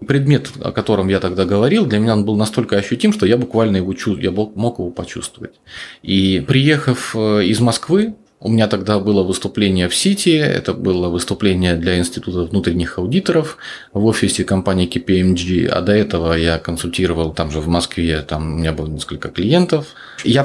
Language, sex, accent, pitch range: Russian, male, native, 90-125 Hz